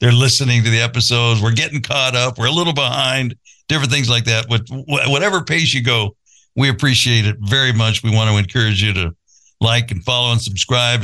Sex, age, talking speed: male, 60-79, 205 wpm